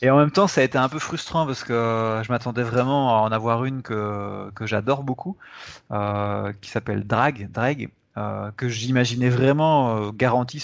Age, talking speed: 30-49, 190 wpm